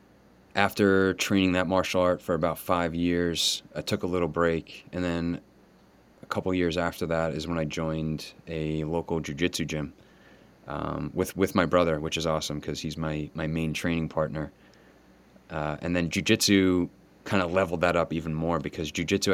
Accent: American